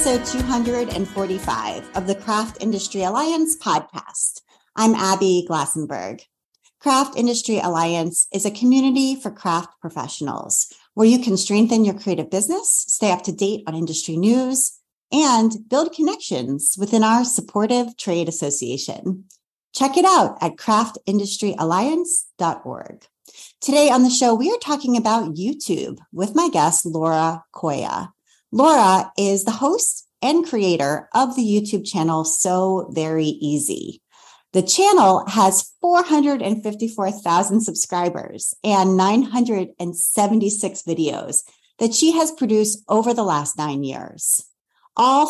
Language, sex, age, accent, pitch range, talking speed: English, female, 30-49, American, 180-245 Hz, 120 wpm